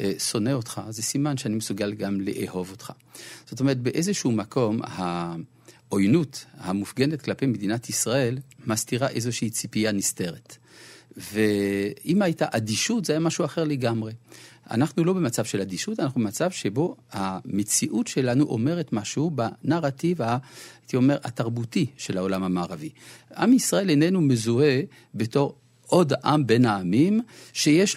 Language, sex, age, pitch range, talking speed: Hebrew, male, 50-69, 110-150 Hz, 125 wpm